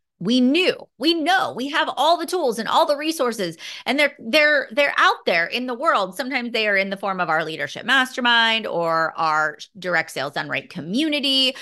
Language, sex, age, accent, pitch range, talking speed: English, female, 30-49, American, 175-250 Hz, 200 wpm